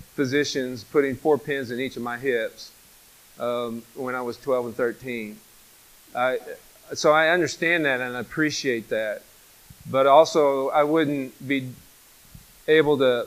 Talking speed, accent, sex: 145 wpm, American, male